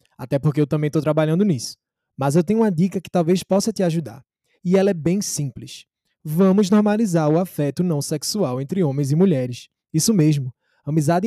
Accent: Brazilian